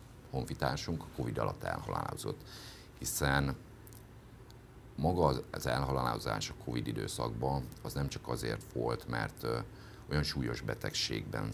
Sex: male